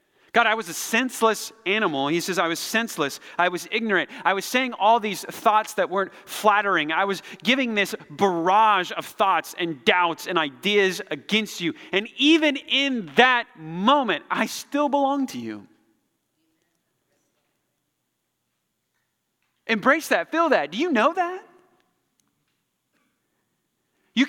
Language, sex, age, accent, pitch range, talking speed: English, male, 30-49, American, 195-285 Hz, 135 wpm